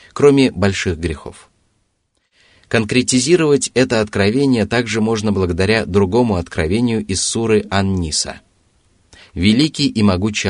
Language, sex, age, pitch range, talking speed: Russian, male, 30-49, 90-120 Hz, 105 wpm